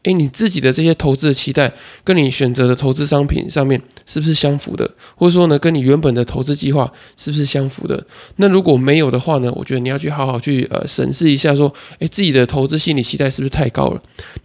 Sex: male